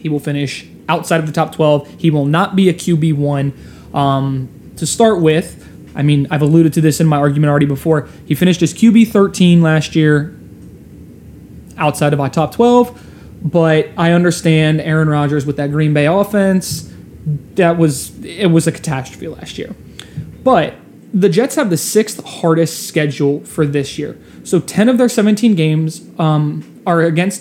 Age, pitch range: 20-39, 150-185 Hz